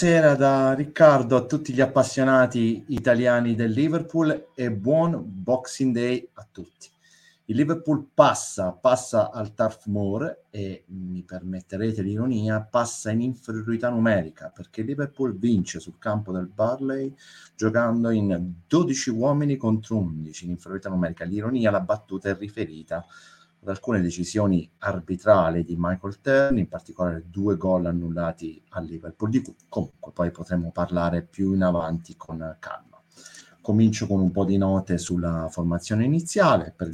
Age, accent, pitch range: 30-49, native, 90-125 Hz